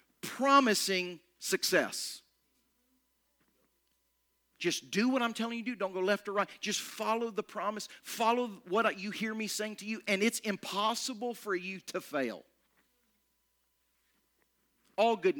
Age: 40-59